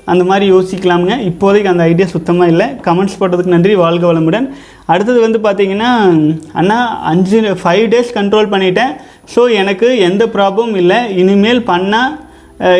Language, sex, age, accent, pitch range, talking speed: Tamil, male, 30-49, native, 180-225 Hz, 135 wpm